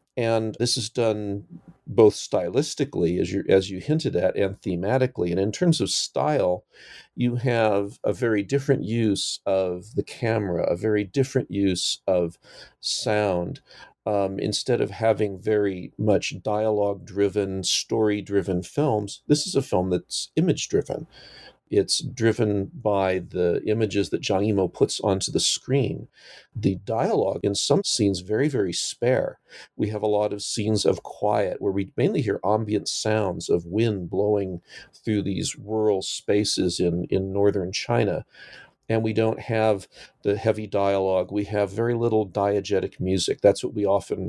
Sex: male